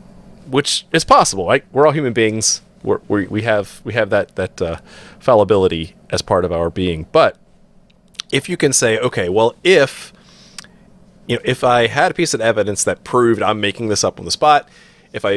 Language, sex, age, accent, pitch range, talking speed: English, male, 30-49, American, 100-130 Hz, 195 wpm